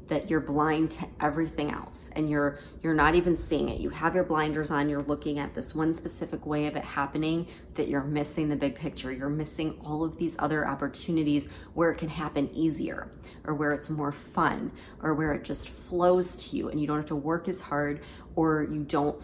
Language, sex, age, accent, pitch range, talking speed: English, female, 30-49, American, 145-165 Hz, 215 wpm